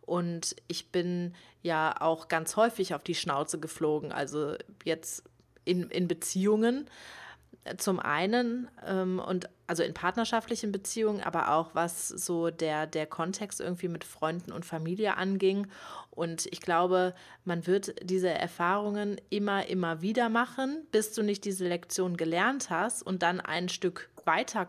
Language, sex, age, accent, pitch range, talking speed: German, female, 30-49, German, 165-190 Hz, 145 wpm